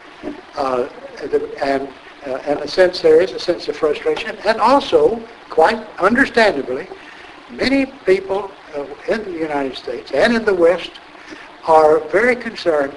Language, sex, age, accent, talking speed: English, male, 60-79, American, 145 wpm